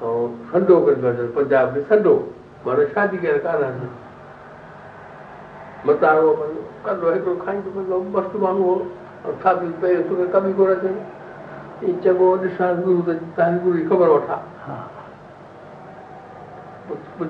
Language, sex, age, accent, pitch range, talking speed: Hindi, male, 60-79, native, 175-230 Hz, 200 wpm